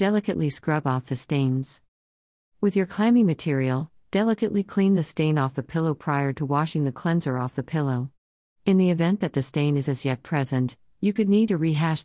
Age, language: 50-69, English